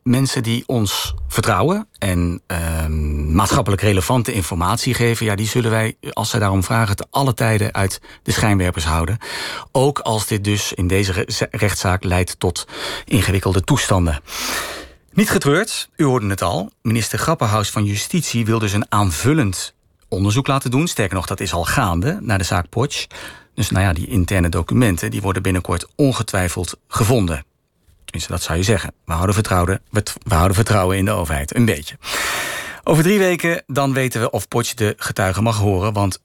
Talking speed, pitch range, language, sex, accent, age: 175 wpm, 95-120 Hz, Dutch, male, Dutch, 40-59